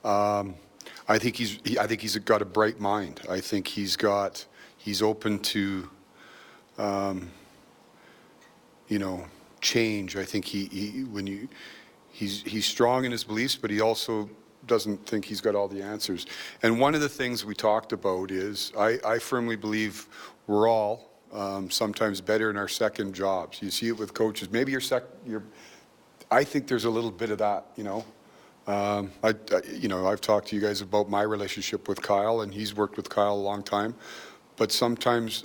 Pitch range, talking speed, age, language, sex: 100-115 Hz, 190 wpm, 40-59, English, male